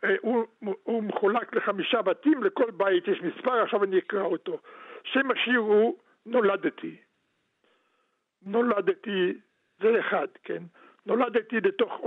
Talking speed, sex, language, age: 115 wpm, male, Hebrew, 60-79